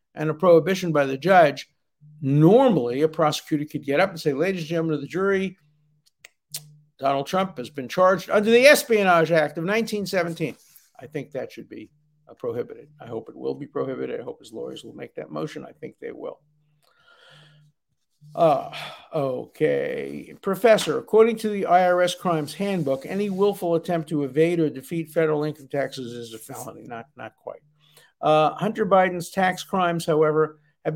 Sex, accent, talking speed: male, American, 170 wpm